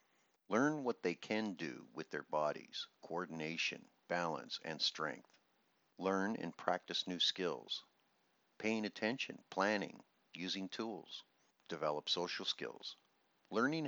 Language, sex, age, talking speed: English, male, 50-69, 110 wpm